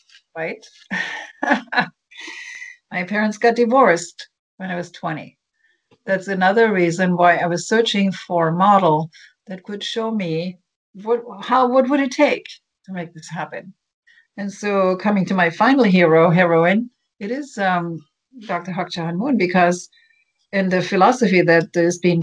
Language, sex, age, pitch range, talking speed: English, female, 60-79, 175-230 Hz, 145 wpm